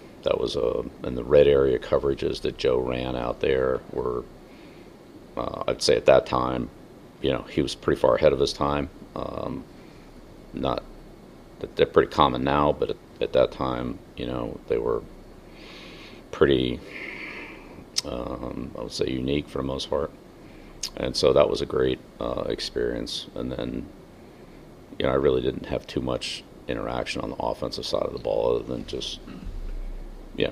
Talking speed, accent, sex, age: 170 wpm, American, male, 40-59